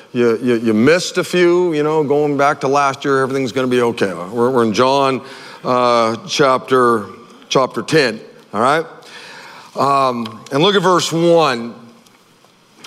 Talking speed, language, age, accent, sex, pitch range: 160 wpm, English, 50-69, American, male, 130-180 Hz